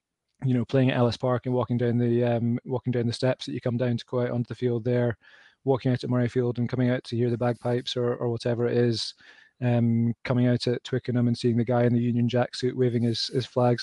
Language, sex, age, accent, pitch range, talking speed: English, male, 20-39, British, 120-125 Hz, 265 wpm